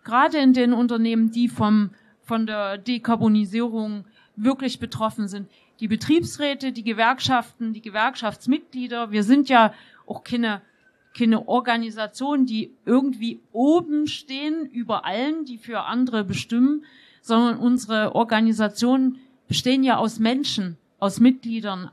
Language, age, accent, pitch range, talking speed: German, 40-59, German, 225-270 Hz, 120 wpm